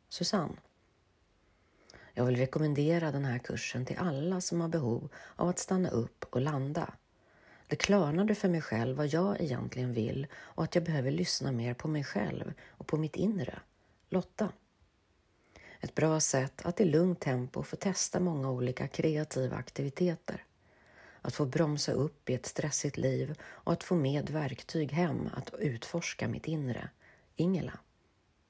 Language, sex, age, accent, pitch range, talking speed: Swedish, female, 40-59, native, 125-175 Hz, 155 wpm